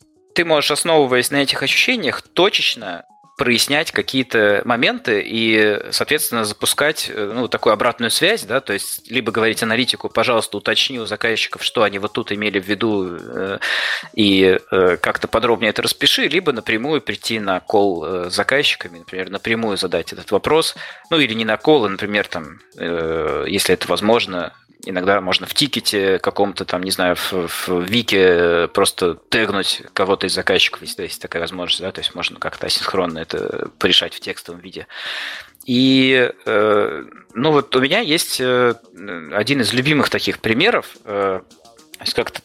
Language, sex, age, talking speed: Russian, male, 20-39, 145 wpm